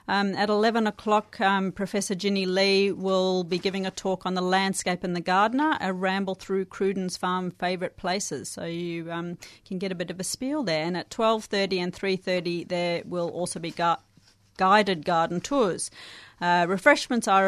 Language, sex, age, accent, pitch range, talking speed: English, female, 30-49, Australian, 165-195 Hz, 175 wpm